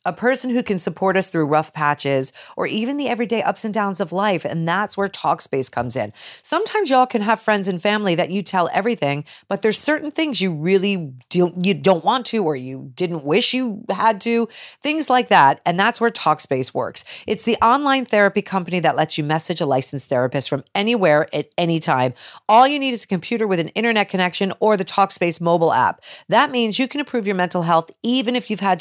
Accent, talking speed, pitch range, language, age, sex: American, 220 wpm, 155-220 Hz, English, 40-59, female